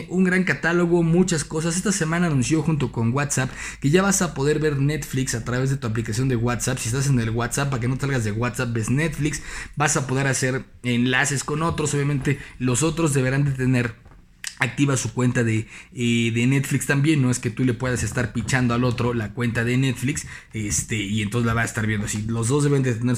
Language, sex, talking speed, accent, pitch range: Spanish, male, 225 wpm, Mexican, 130-170 Hz